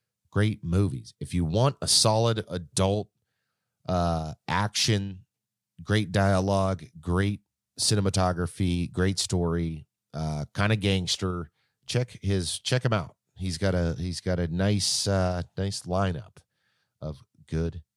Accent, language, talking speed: American, English, 125 wpm